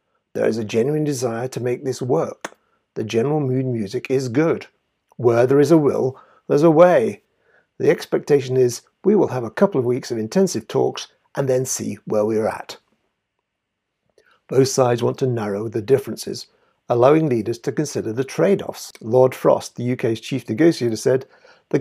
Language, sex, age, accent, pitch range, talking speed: English, male, 60-79, British, 115-150 Hz, 175 wpm